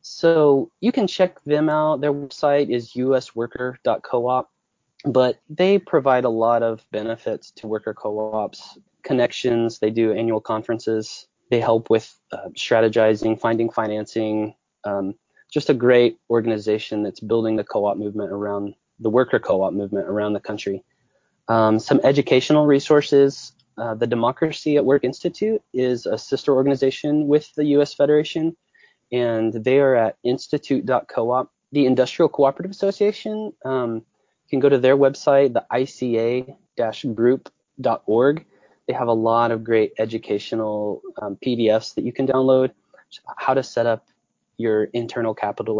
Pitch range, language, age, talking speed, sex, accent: 110-145 Hz, English, 20-39, 140 wpm, male, American